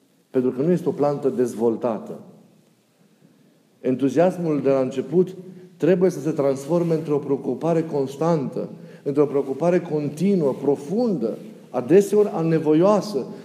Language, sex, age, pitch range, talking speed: Romanian, male, 40-59, 140-185 Hz, 105 wpm